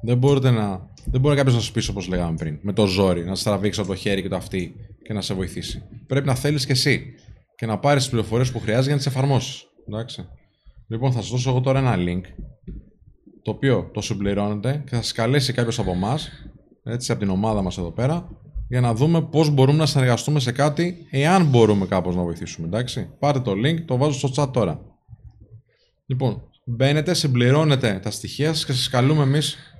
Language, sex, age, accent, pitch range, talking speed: Greek, male, 20-39, native, 110-135 Hz, 200 wpm